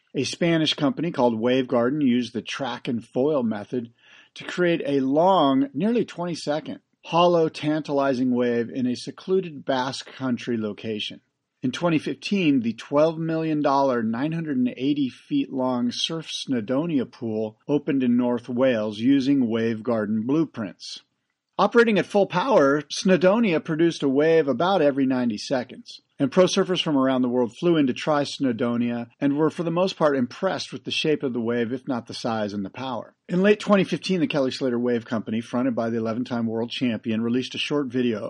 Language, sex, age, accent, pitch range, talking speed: English, male, 50-69, American, 120-160 Hz, 170 wpm